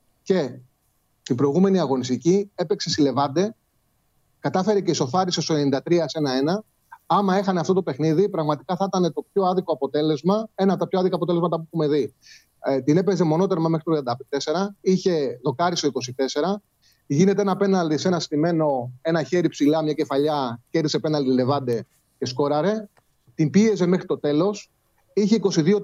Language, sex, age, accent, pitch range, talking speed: Greek, male, 30-49, native, 145-190 Hz, 160 wpm